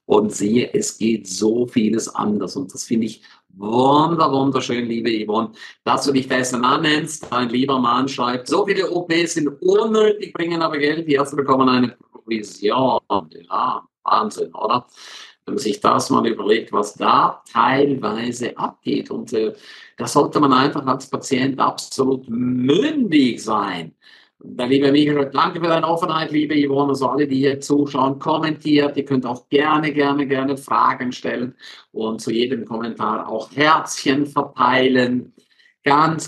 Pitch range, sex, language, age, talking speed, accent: 125-150 Hz, male, German, 50-69, 150 wpm, German